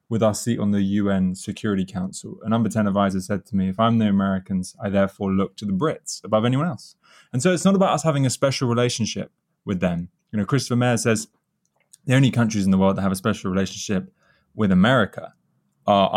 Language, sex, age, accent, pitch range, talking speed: English, male, 20-39, British, 95-120 Hz, 230 wpm